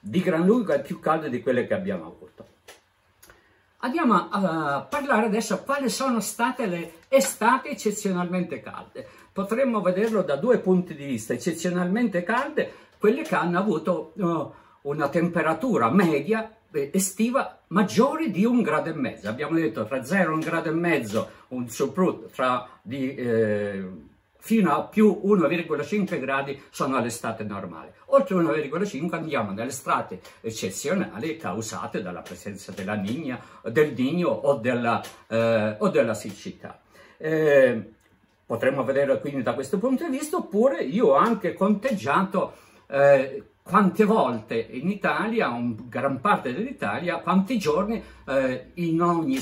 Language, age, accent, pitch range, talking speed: Italian, 50-69, native, 140-210 Hz, 135 wpm